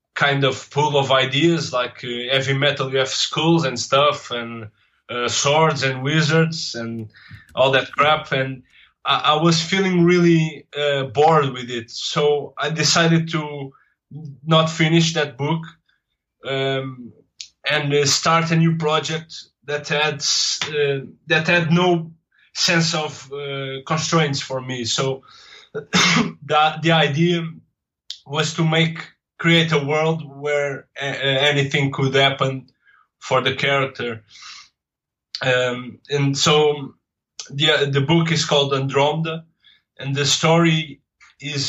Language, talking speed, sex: English, 130 wpm, male